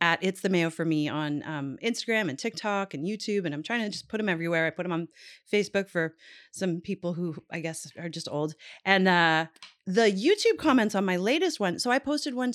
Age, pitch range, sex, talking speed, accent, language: 30-49, 170-220 Hz, female, 230 wpm, American, English